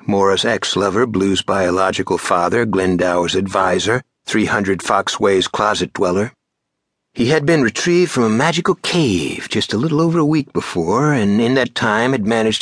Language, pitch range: English, 105-155 Hz